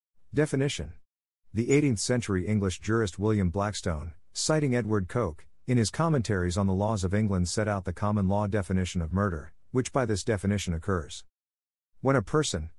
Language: English